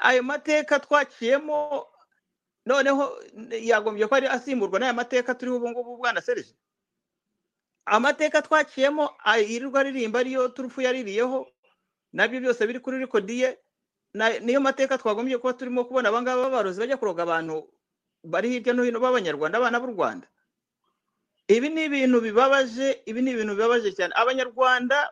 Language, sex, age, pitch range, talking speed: English, male, 50-69, 210-270 Hz, 130 wpm